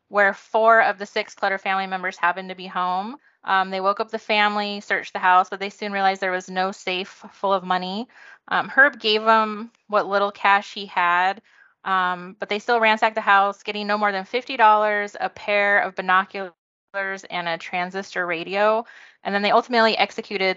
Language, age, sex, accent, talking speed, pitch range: English, 20-39, female, American, 195 wpm, 185-210 Hz